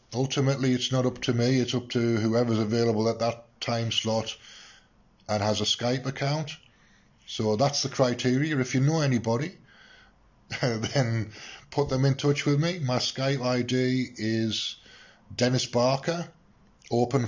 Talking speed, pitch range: 145 wpm, 105-130 Hz